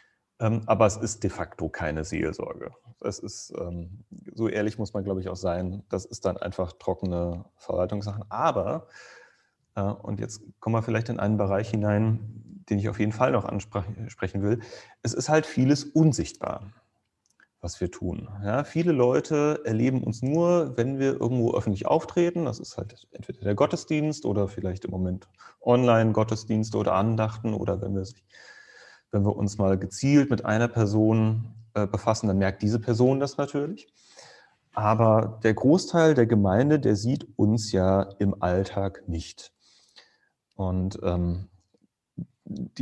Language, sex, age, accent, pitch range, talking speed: German, male, 30-49, German, 100-120 Hz, 150 wpm